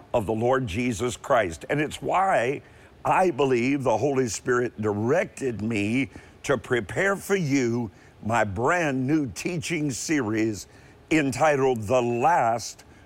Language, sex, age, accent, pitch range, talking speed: English, male, 50-69, American, 115-150 Hz, 125 wpm